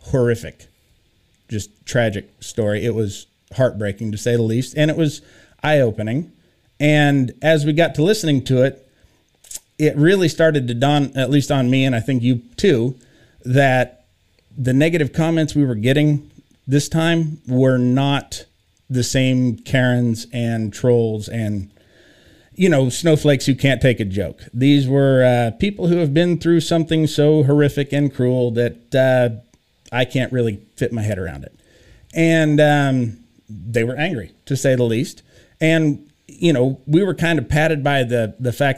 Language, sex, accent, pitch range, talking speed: English, male, American, 120-150 Hz, 165 wpm